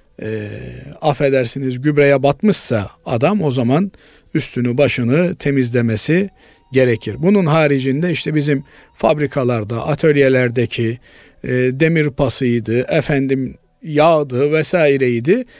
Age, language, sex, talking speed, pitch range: 50-69, Turkish, male, 90 wpm, 130-175 Hz